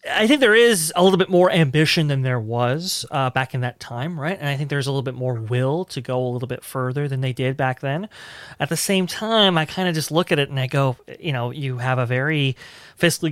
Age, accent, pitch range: 30-49, American, 130-175 Hz